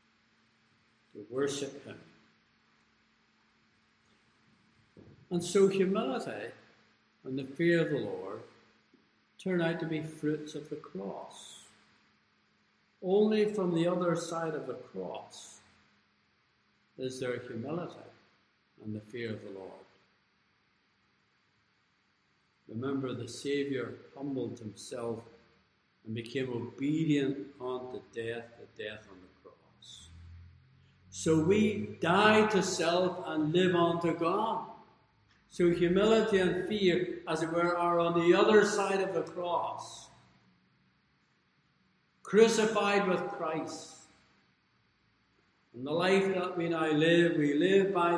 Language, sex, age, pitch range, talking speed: English, male, 60-79, 120-180 Hz, 110 wpm